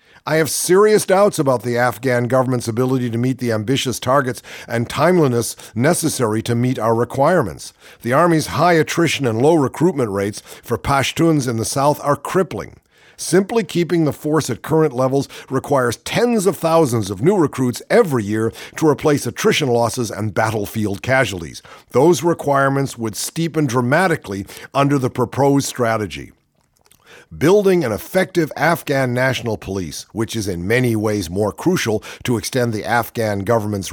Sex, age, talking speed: male, 50-69, 150 wpm